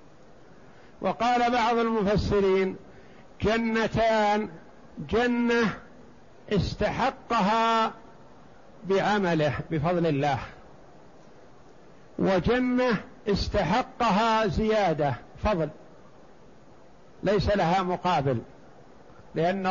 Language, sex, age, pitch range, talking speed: Arabic, male, 60-79, 185-220 Hz, 50 wpm